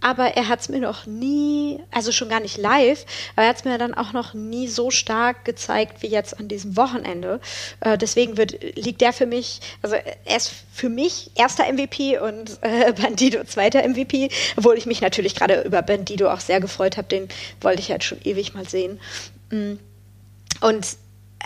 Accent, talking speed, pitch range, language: German, 185 wpm, 205-250 Hz, German